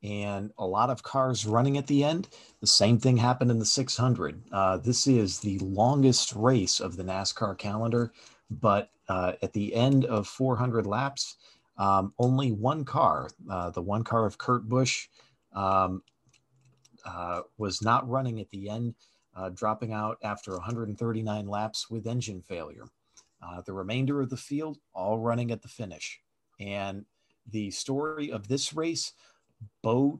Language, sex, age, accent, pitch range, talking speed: English, male, 40-59, American, 100-125 Hz, 160 wpm